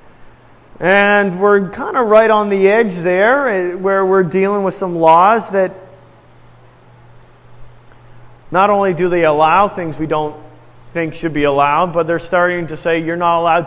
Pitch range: 150-185 Hz